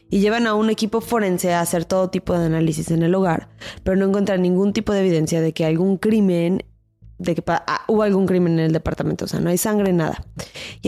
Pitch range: 170-200 Hz